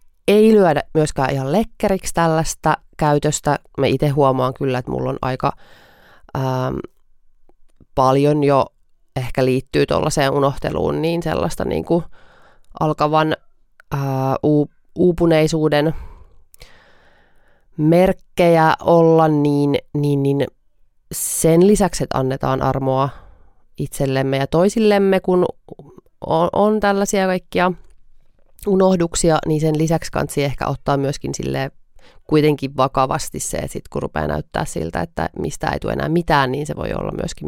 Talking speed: 120 wpm